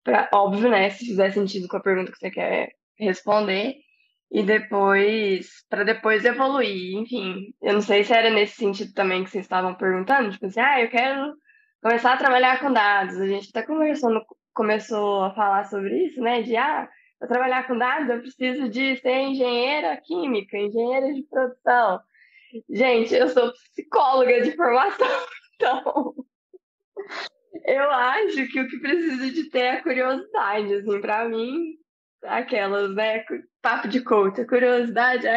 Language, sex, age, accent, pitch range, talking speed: Portuguese, female, 10-29, Brazilian, 210-300 Hz, 155 wpm